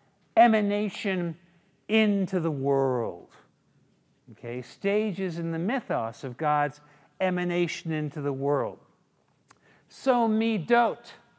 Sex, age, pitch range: male, 50-69, 150-210 Hz